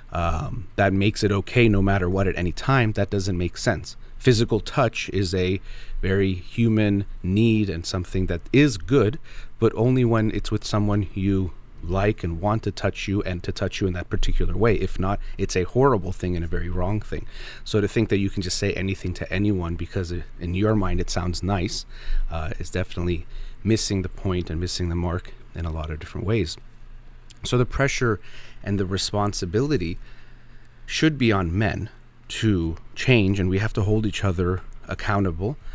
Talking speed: 190 wpm